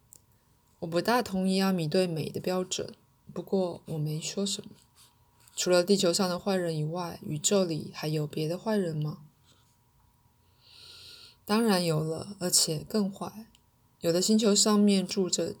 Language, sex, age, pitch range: Chinese, female, 20-39, 150-200 Hz